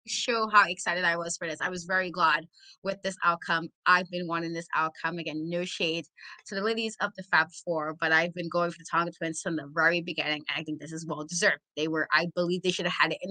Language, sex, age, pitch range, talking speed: English, female, 20-39, 170-250 Hz, 255 wpm